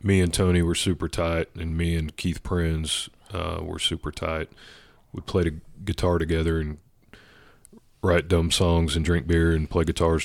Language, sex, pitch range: English, male, 80-90 Hz